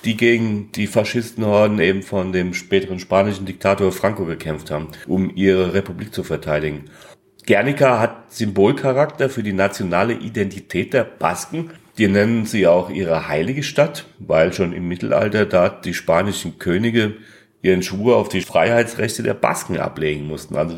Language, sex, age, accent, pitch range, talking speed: German, male, 40-59, German, 95-115 Hz, 150 wpm